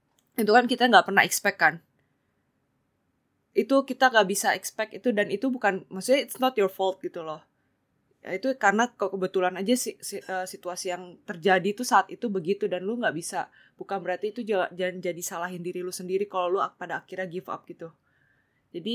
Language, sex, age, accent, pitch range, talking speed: Indonesian, female, 20-39, native, 175-200 Hz, 175 wpm